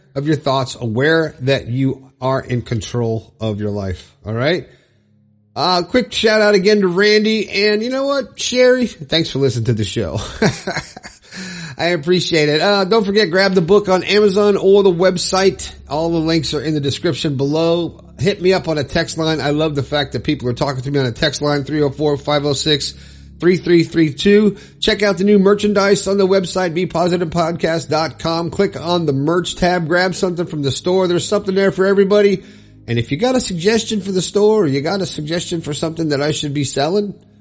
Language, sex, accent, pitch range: English, male, American, 130-185 Hz